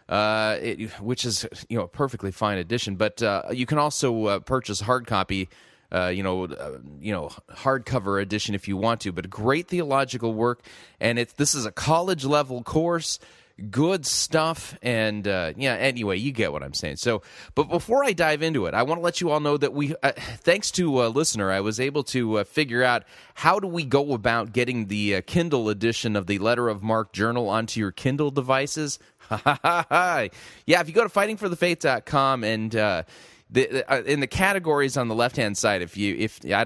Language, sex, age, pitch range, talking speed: English, male, 30-49, 105-135 Hz, 205 wpm